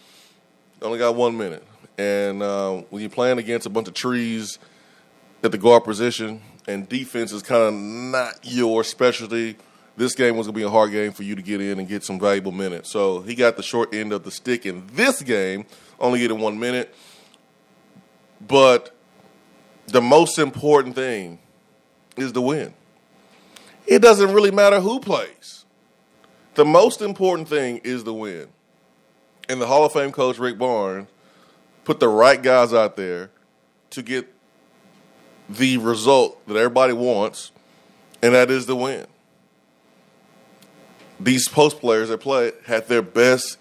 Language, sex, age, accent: English, male, 30-49, American